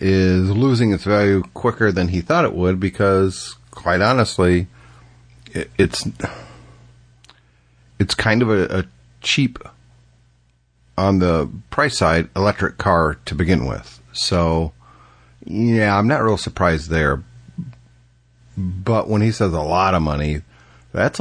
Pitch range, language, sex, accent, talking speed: 75-105 Hz, English, male, American, 125 wpm